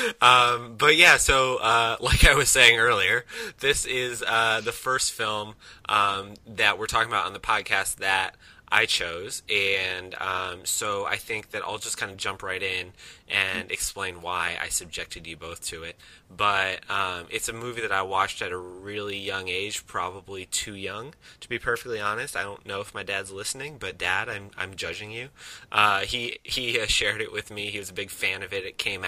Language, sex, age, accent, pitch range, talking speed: English, male, 20-39, American, 90-110 Hz, 200 wpm